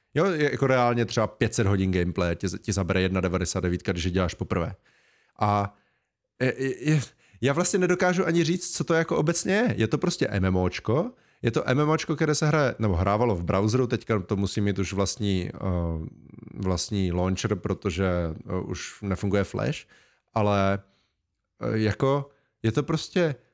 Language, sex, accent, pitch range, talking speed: Czech, male, native, 100-140 Hz, 150 wpm